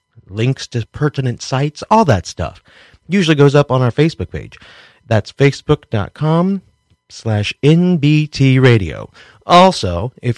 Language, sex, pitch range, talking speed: English, male, 110-145 Hz, 115 wpm